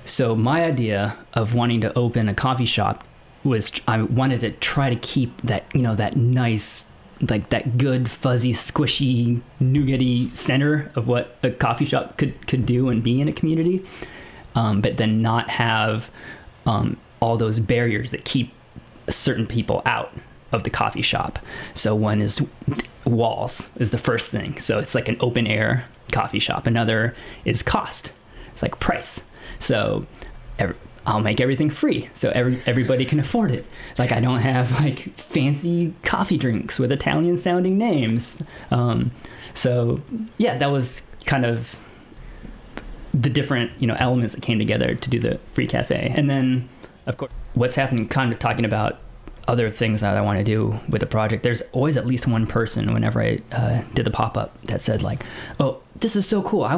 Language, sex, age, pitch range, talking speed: English, male, 20-39, 115-135 Hz, 175 wpm